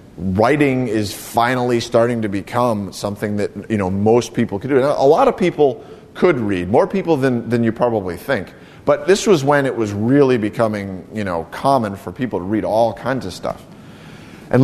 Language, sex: English, male